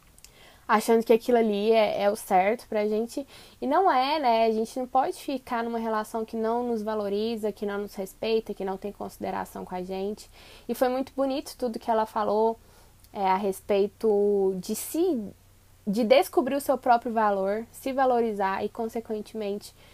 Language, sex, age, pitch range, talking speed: Portuguese, female, 10-29, 205-250 Hz, 175 wpm